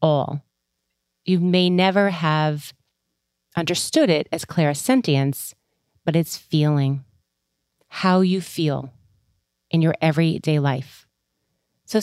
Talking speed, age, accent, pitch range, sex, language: 100 wpm, 30-49, American, 140-185 Hz, female, English